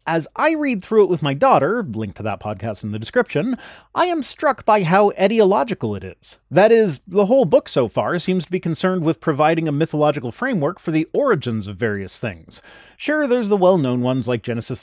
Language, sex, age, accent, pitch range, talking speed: English, male, 30-49, American, 125-200 Hz, 210 wpm